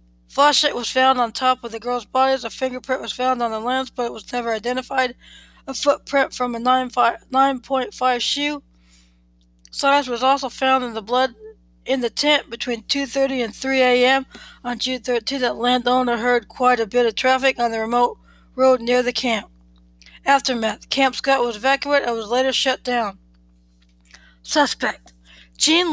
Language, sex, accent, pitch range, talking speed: English, female, American, 235-265 Hz, 170 wpm